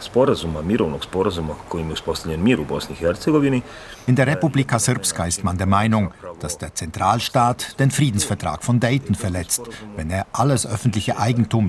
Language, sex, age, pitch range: German, male, 50-69, 95-125 Hz